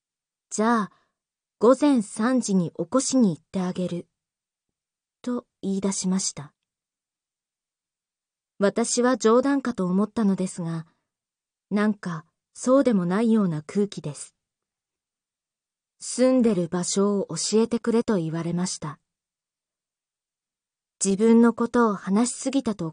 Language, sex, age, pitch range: Japanese, female, 20-39, 180-235 Hz